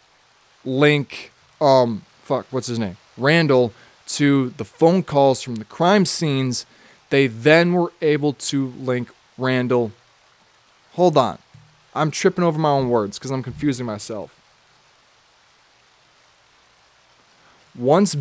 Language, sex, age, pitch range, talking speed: English, male, 20-39, 125-155 Hz, 115 wpm